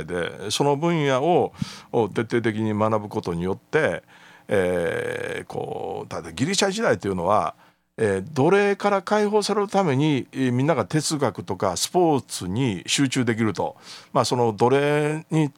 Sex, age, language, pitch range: male, 50-69, Japanese, 110-170 Hz